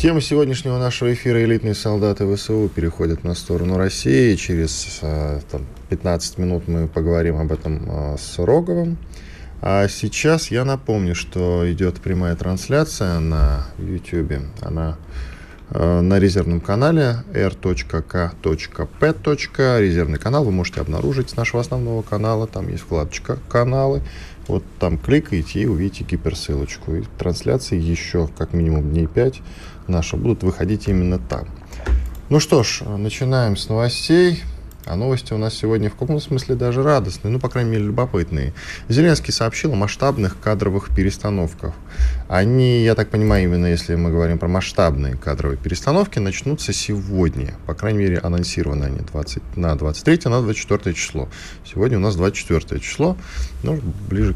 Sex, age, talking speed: male, 20-39, 140 wpm